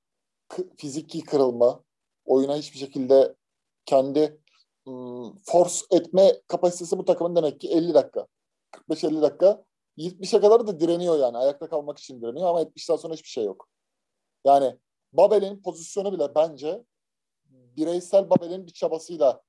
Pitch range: 145-195 Hz